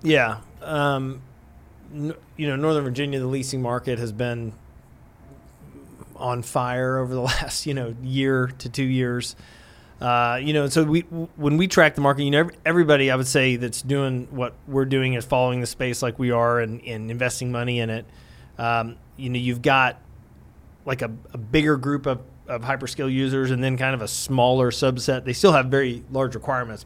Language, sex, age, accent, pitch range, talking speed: English, male, 30-49, American, 120-135 Hz, 185 wpm